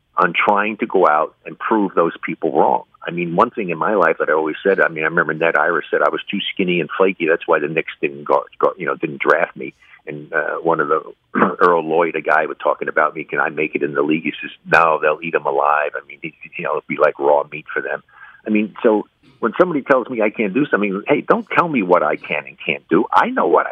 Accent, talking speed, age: American, 280 wpm, 50-69